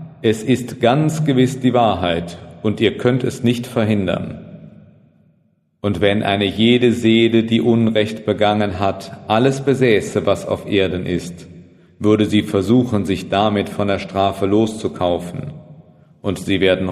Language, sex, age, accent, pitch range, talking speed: German, male, 40-59, German, 95-115 Hz, 140 wpm